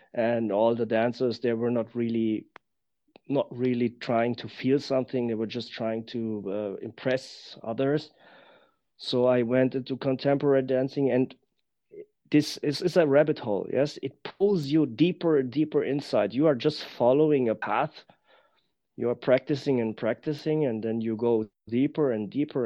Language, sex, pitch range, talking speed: English, male, 115-150 Hz, 160 wpm